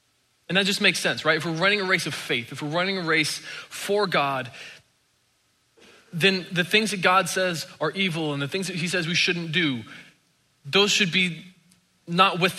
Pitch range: 140-180 Hz